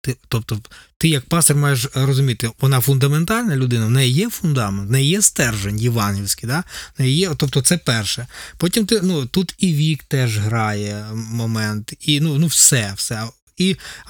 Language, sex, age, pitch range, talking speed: Ukrainian, male, 20-39, 115-150 Hz, 160 wpm